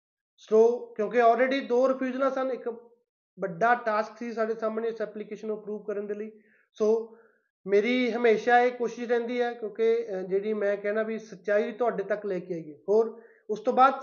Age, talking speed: 20-39, 180 wpm